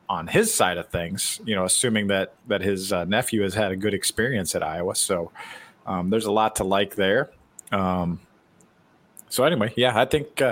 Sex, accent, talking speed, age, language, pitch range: male, American, 195 wpm, 40-59, English, 95-120 Hz